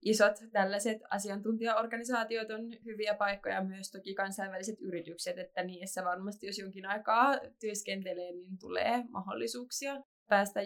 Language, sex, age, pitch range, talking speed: Finnish, female, 20-39, 185-220 Hz, 120 wpm